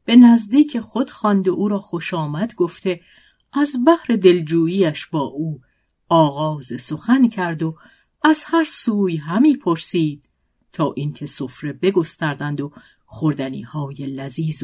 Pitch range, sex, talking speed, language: 155-205 Hz, female, 130 wpm, Persian